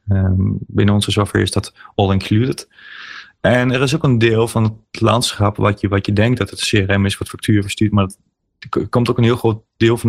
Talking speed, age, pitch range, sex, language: 230 wpm, 30-49, 100-120 Hz, male, Dutch